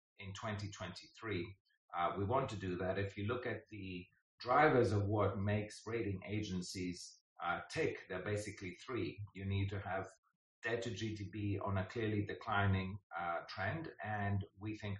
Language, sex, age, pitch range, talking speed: English, male, 40-59, 95-110 Hz, 160 wpm